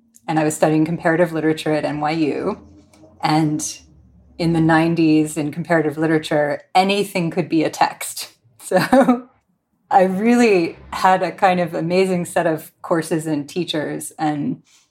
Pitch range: 155-180 Hz